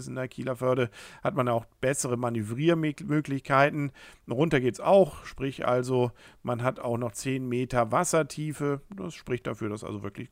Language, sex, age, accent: German, male, 50-69, German